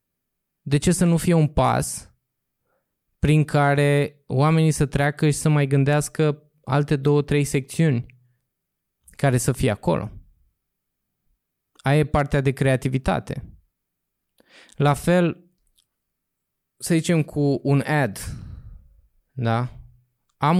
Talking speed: 110 wpm